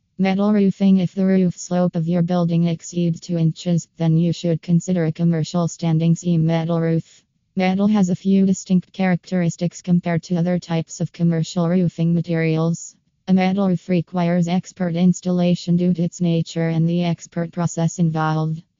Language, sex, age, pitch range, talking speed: English, female, 20-39, 165-175 Hz, 165 wpm